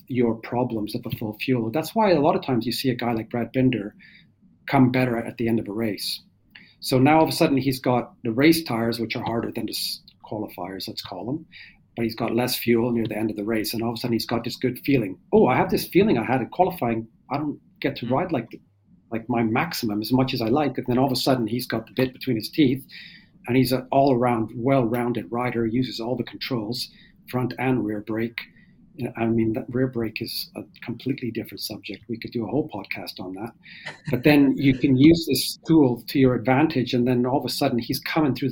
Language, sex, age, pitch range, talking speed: English, male, 40-59, 115-135 Hz, 245 wpm